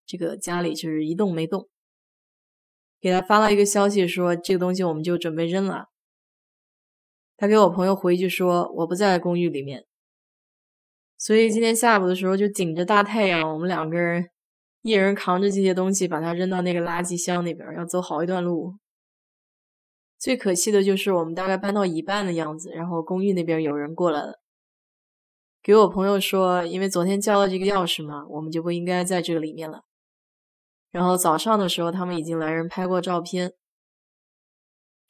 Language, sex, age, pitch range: Chinese, female, 20-39, 170-195 Hz